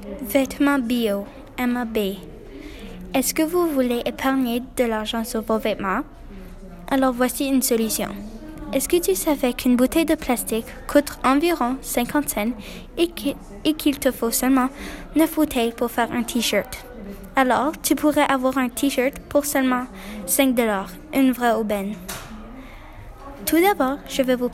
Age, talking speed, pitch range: 10-29, 140 wpm, 235-275 Hz